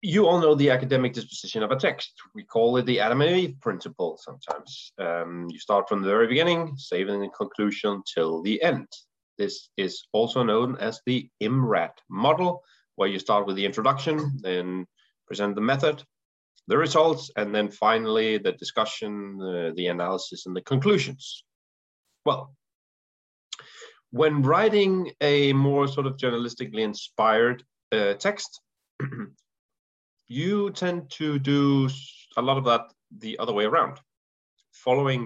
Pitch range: 105-145 Hz